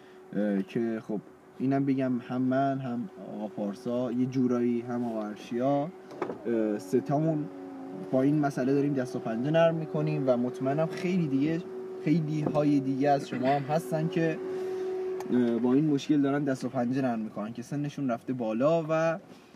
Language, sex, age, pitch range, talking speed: Persian, male, 20-39, 125-165 Hz, 150 wpm